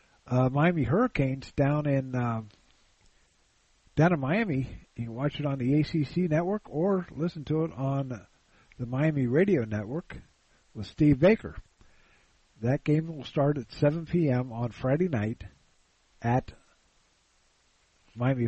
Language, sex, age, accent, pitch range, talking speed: English, male, 50-69, American, 115-155 Hz, 135 wpm